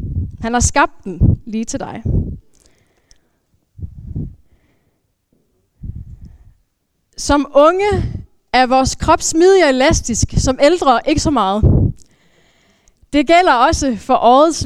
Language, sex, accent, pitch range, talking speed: Danish, female, native, 250-320 Hz, 95 wpm